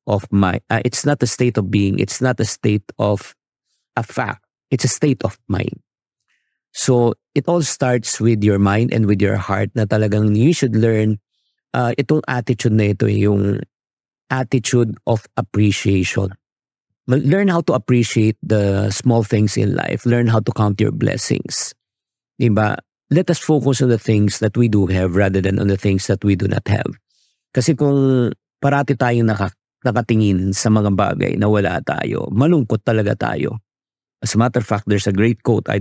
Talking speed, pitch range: 180 wpm, 100-125 Hz